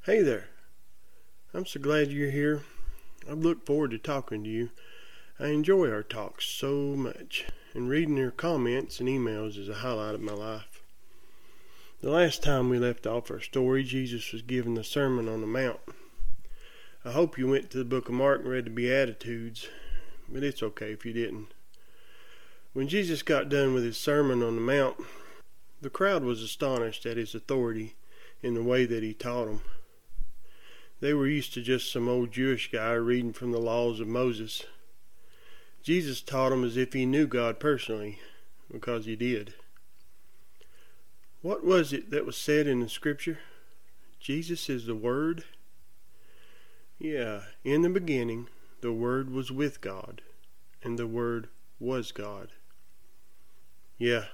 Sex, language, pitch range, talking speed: male, English, 115-145 Hz, 160 wpm